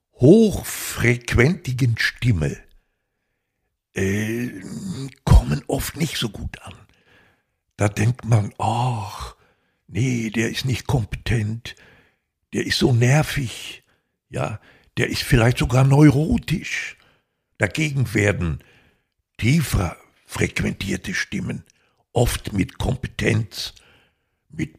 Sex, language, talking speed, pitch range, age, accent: male, German, 90 wpm, 105-135 Hz, 60-79, German